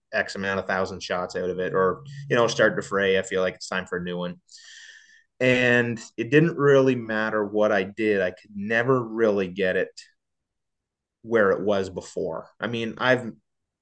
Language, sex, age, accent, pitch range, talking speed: English, male, 20-39, American, 95-120 Hz, 190 wpm